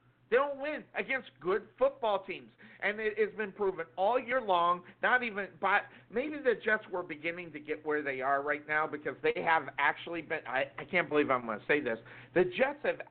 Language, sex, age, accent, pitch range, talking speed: English, male, 50-69, American, 150-195 Hz, 215 wpm